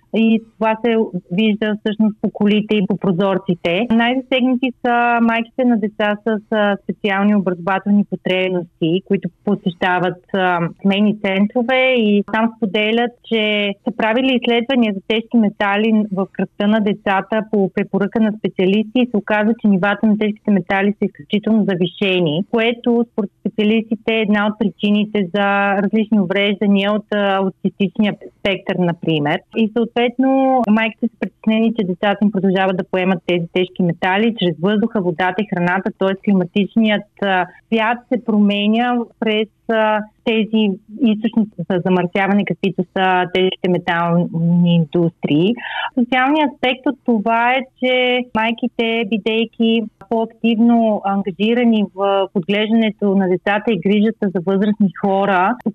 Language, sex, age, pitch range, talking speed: Bulgarian, female, 30-49, 195-225 Hz, 130 wpm